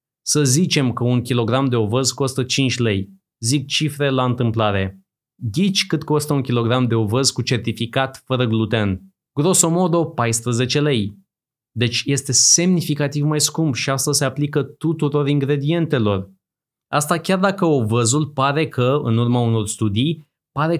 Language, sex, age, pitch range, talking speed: Romanian, male, 20-39, 120-150 Hz, 145 wpm